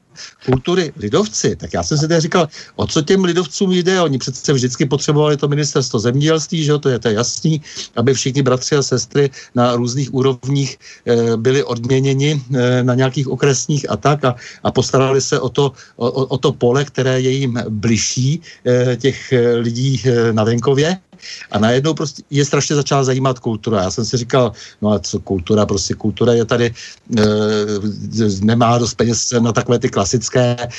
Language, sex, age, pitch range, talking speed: Slovak, male, 60-79, 120-145 Hz, 175 wpm